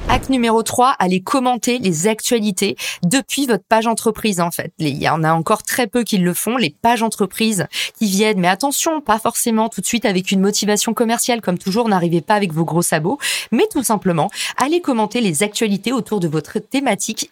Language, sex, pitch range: French, female, 175-225 Hz